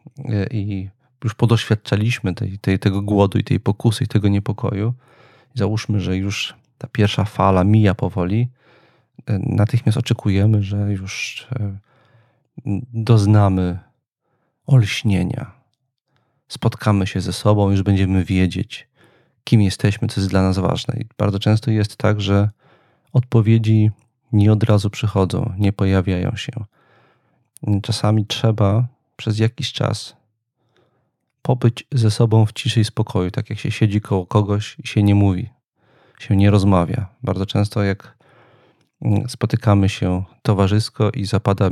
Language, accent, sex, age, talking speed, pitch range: Polish, native, male, 40-59, 120 wpm, 100-120 Hz